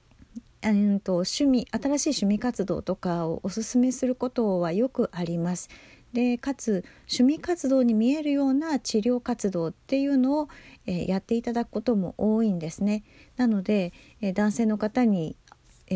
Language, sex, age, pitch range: Japanese, female, 50-69, 190-255 Hz